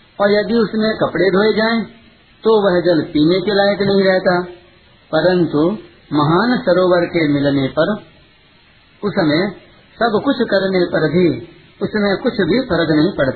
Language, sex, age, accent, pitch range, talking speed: Hindi, male, 50-69, native, 155-195 Hz, 145 wpm